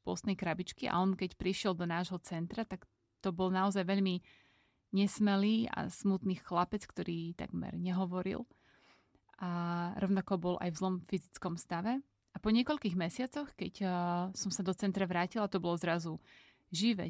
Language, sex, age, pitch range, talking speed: Slovak, female, 30-49, 180-200 Hz, 145 wpm